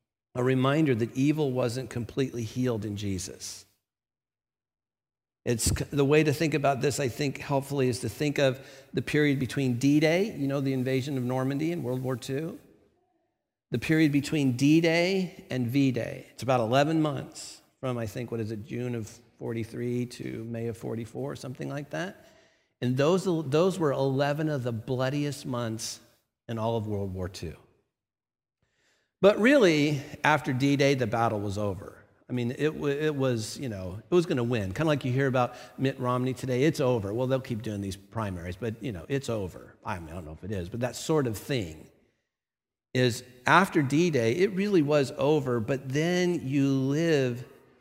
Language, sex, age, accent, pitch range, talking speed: English, male, 50-69, American, 115-145 Hz, 180 wpm